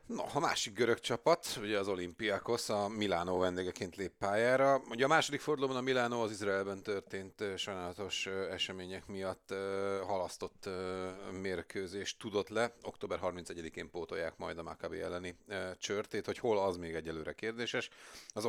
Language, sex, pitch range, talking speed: Hungarian, male, 90-110 Hz, 145 wpm